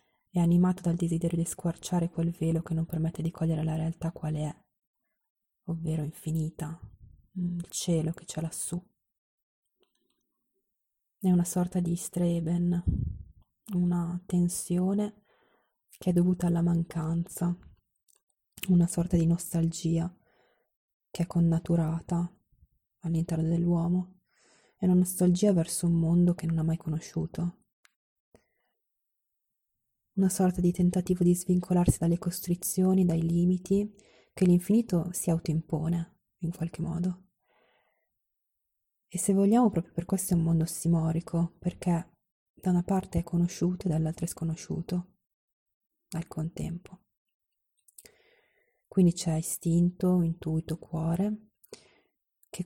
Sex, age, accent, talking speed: female, 20-39, native, 115 wpm